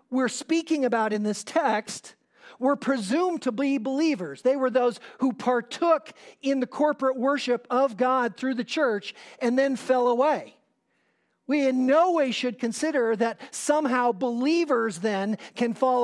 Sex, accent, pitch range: male, American, 220-270 Hz